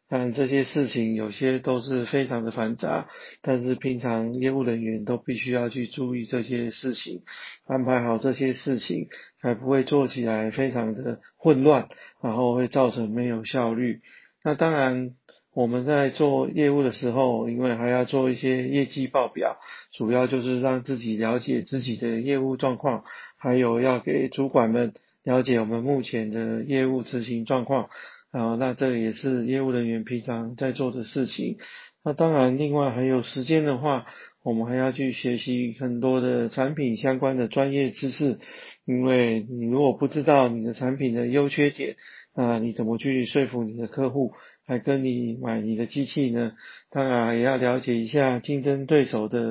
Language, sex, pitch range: Chinese, male, 120-135 Hz